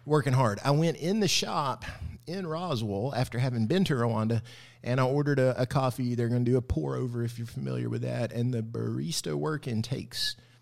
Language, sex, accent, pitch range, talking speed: English, male, American, 115-150 Hz, 210 wpm